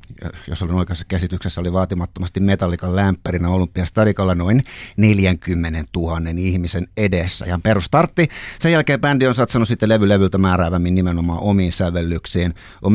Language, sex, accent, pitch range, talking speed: Finnish, male, native, 85-105 Hz, 125 wpm